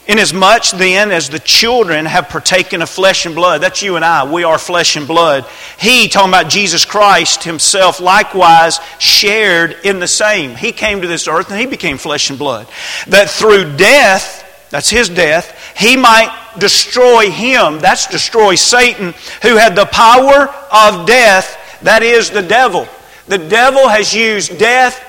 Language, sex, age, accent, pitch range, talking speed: English, male, 40-59, American, 180-235 Hz, 165 wpm